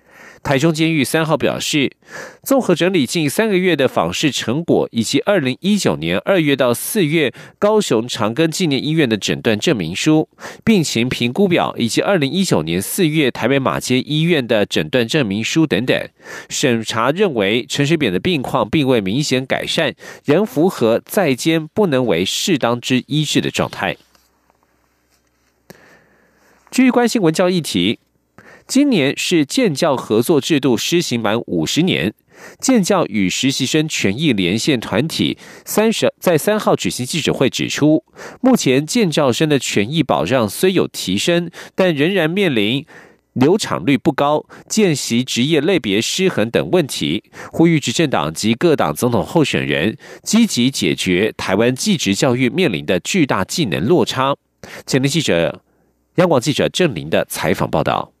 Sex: male